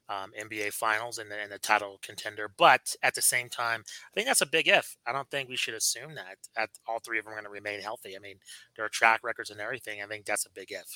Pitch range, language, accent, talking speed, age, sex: 110-140 Hz, English, American, 275 wpm, 30-49, male